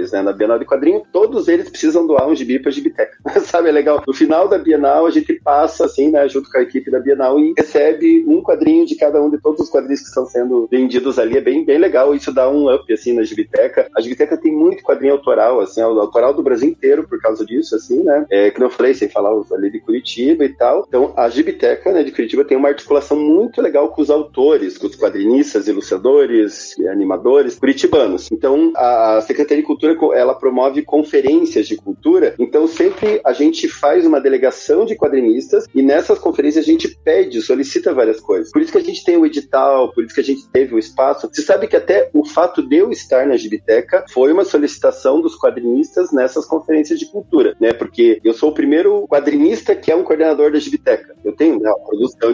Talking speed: 215 wpm